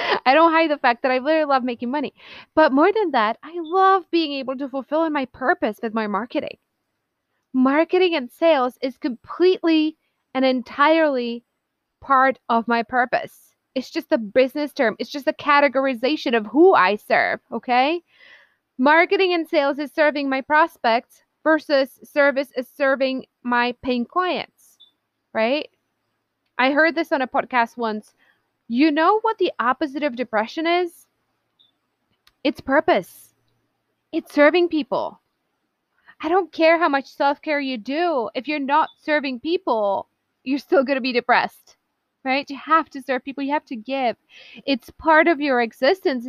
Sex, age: female, 20-39